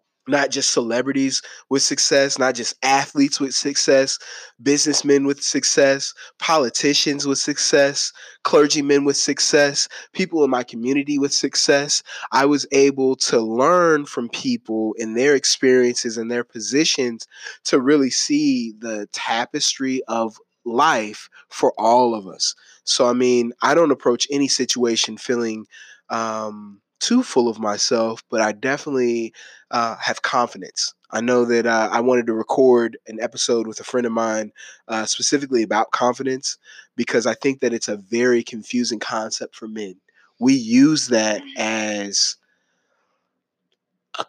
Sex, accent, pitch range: male, American, 110-140 Hz